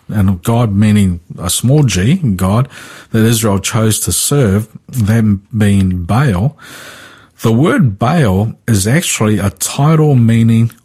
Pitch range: 100-120 Hz